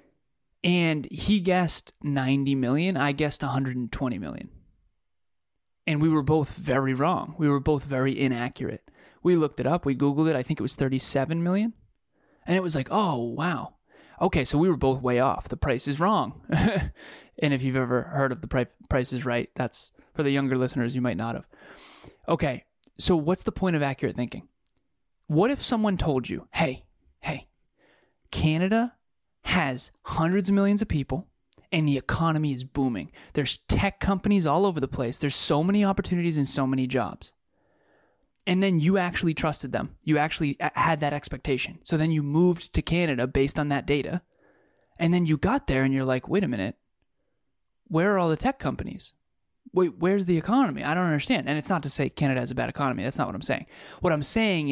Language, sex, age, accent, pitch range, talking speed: English, male, 20-39, American, 130-175 Hz, 195 wpm